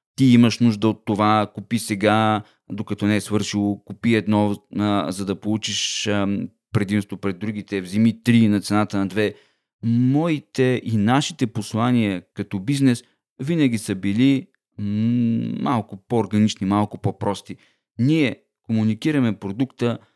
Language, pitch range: Bulgarian, 100-120 Hz